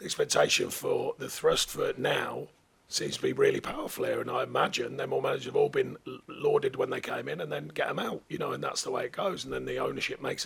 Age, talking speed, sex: 40-59, 260 wpm, male